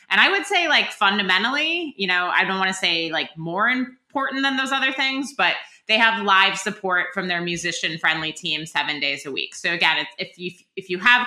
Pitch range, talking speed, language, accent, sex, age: 170-220 Hz, 220 wpm, English, American, female, 20-39